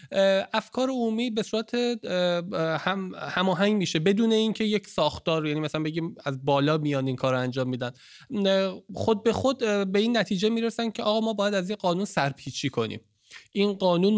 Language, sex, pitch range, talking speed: English, male, 155-210 Hz, 165 wpm